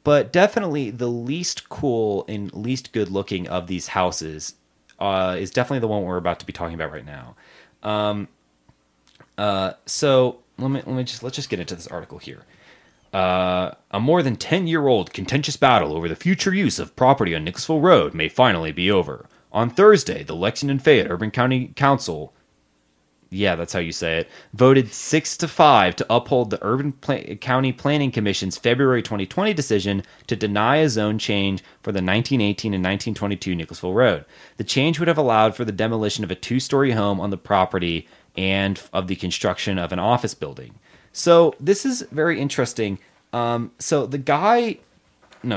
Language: English